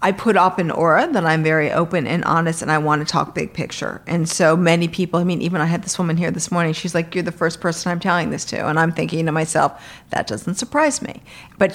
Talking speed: 265 wpm